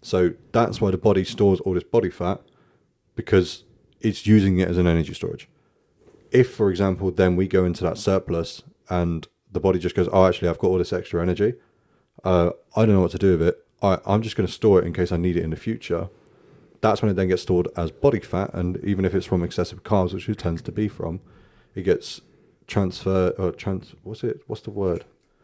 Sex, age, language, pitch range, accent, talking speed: male, 30-49, English, 90-105 Hz, British, 225 wpm